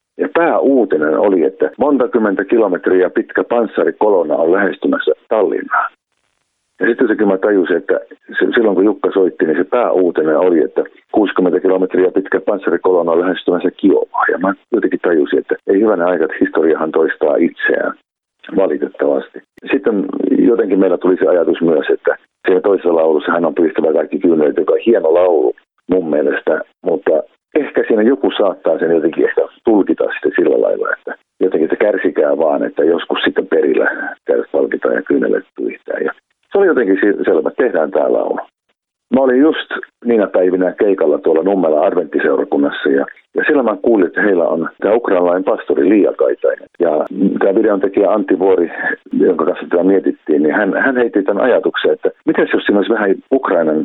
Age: 50-69